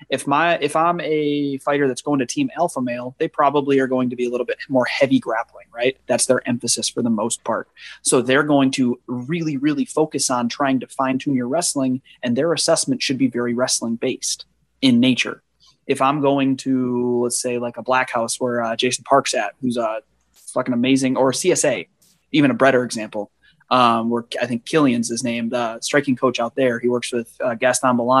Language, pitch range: English, 120-145 Hz